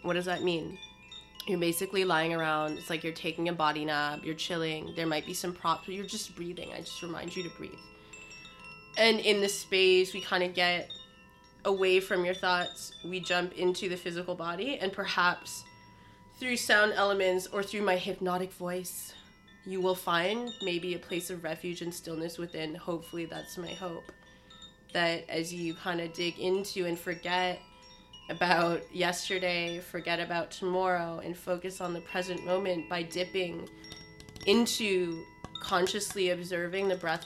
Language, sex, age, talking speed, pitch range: English, female, 20-39, 165 wpm, 170-190 Hz